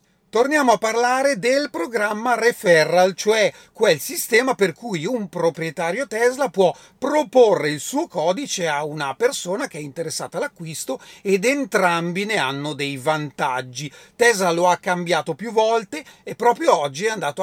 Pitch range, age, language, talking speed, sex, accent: 150-230 Hz, 40-59, Italian, 150 wpm, male, native